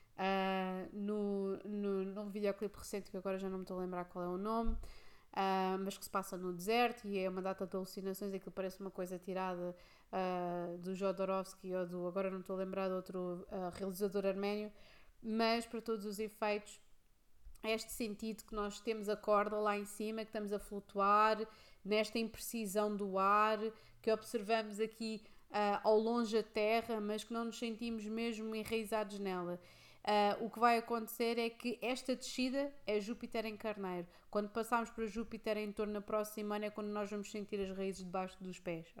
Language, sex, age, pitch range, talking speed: Portuguese, female, 20-39, 195-225 Hz, 190 wpm